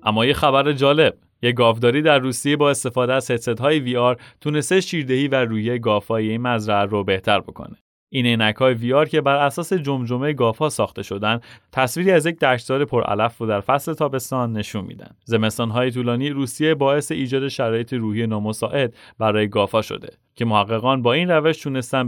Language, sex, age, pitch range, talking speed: Persian, male, 30-49, 110-145 Hz, 165 wpm